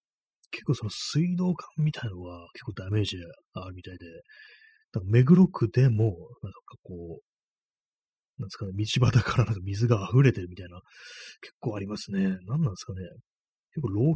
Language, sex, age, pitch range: Japanese, male, 30-49, 95-130 Hz